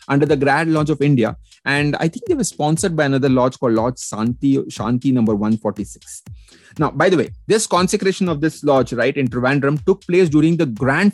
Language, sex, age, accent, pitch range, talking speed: English, male, 30-49, Indian, 125-165 Hz, 205 wpm